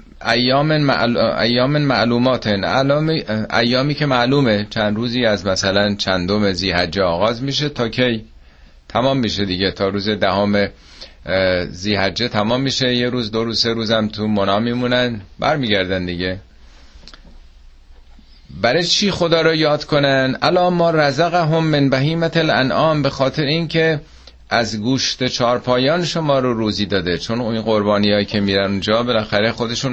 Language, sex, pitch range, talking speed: Persian, male, 95-130 Hz, 130 wpm